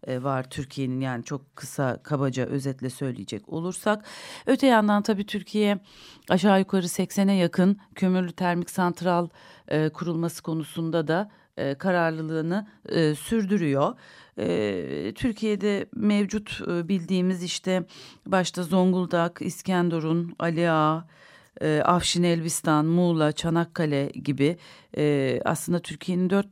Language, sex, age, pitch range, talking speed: Turkish, female, 40-59, 145-185 Hz, 105 wpm